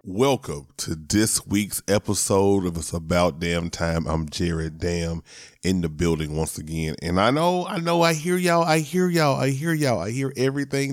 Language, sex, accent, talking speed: English, male, American, 190 wpm